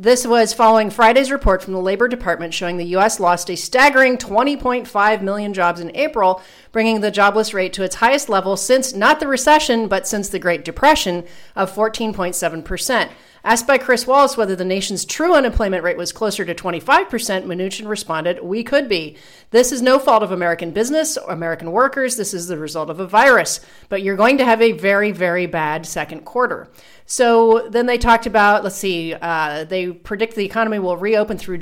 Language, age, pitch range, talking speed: English, 40-59, 185-230 Hz, 190 wpm